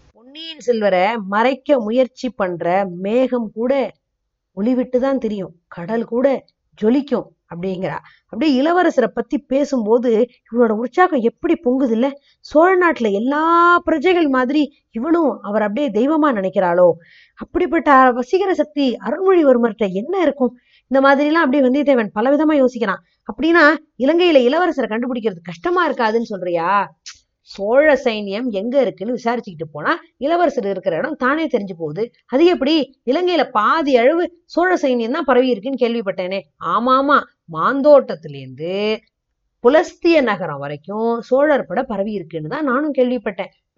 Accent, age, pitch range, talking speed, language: native, 20-39, 220-290 Hz, 105 wpm, Tamil